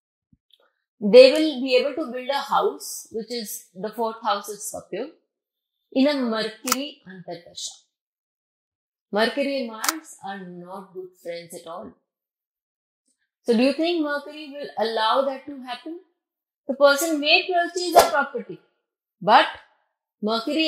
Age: 30-49